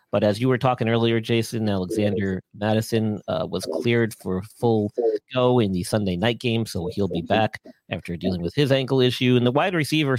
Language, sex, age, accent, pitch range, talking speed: English, male, 40-59, American, 105-140 Hz, 200 wpm